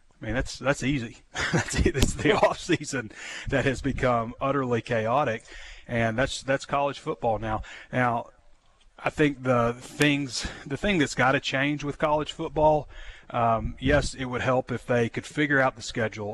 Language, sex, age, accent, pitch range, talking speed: English, male, 30-49, American, 110-130 Hz, 170 wpm